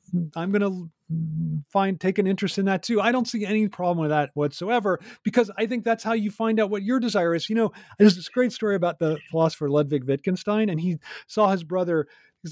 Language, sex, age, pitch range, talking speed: English, male, 40-59, 145-205 Hz, 220 wpm